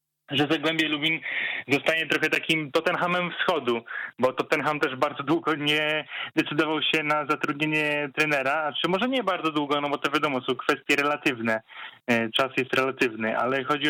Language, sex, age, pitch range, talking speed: Polish, male, 20-39, 140-160 Hz, 155 wpm